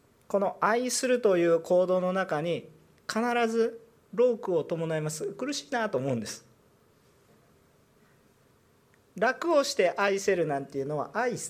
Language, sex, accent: Japanese, male, native